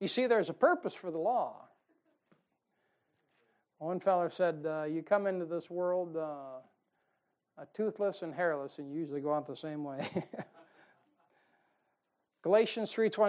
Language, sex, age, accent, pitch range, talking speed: English, male, 60-79, American, 155-200 Hz, 135 wpm